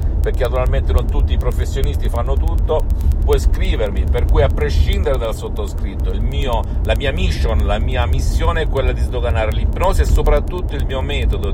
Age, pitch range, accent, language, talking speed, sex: 50-69, 70-80 Hz, native, Italian, 175 wpm, male